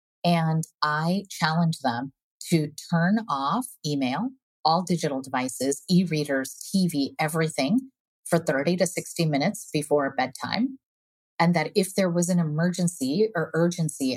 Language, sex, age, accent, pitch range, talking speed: English, female, 30-49, American, 140-175 Hz, 130 wpm